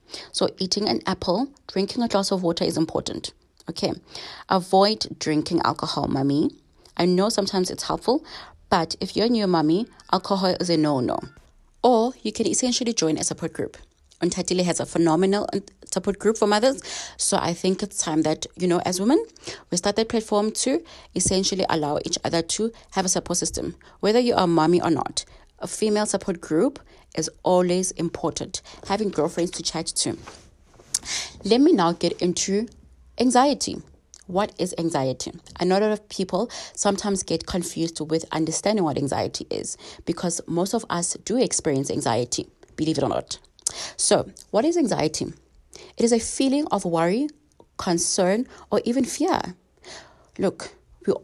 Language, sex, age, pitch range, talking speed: English, female, 30-49, 170-215 Hz, 160 wpm